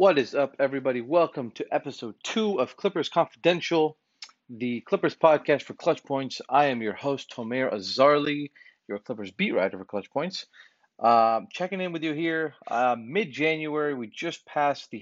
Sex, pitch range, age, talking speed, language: male, 115-155 Hz, 30-49, 170 wpm, English